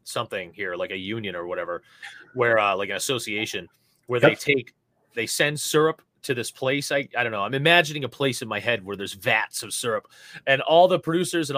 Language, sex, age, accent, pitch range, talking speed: English, male, 30-49, American, 105-145 Hz, 220 wpm